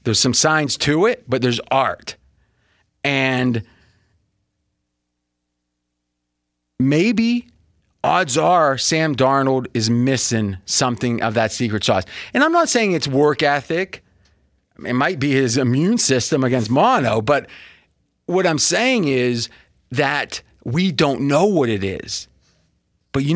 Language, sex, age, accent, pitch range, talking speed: English, male, 30-49, American, 105-155 Hz, 130 wpm